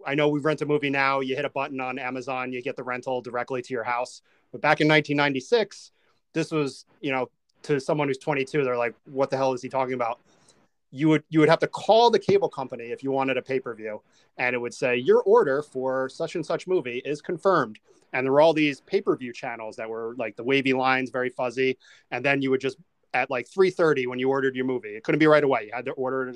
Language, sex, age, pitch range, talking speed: English, male, 30-49, 125-150 Hz, 245 wpm